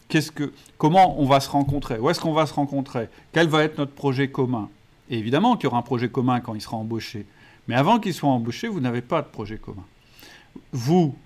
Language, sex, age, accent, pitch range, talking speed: French, male, 50-69, French, 115-145 Hz, 230 wpm